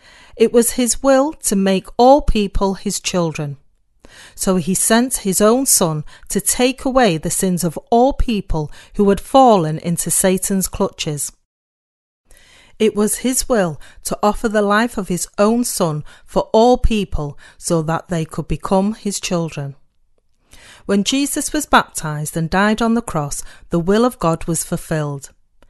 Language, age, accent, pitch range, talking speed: English, 40-59, British, 160-220 Hz, 155 wpm